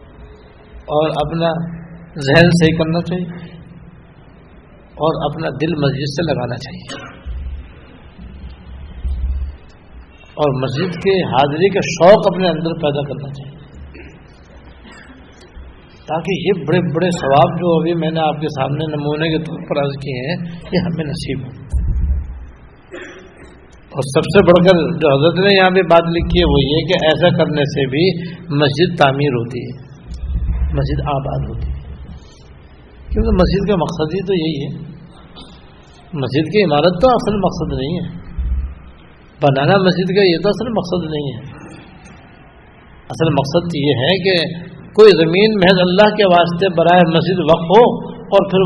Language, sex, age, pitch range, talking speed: Urdu, male, 60-79, 130-175 Hz, 145 wpm